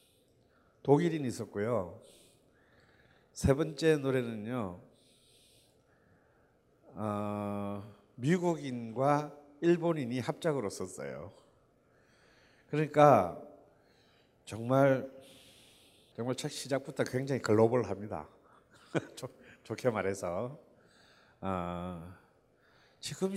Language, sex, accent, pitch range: Korean, male, native, 110-155 Hz